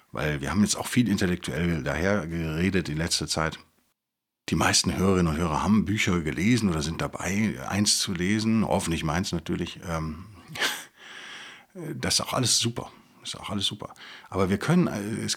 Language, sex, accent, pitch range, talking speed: German, male, German, 85-105 Hz, 165 wpm